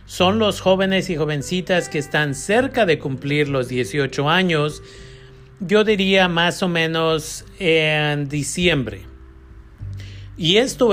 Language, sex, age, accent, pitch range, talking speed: Spanish, male, 40-59, Mexican, 140-180 Hz, 120 wpm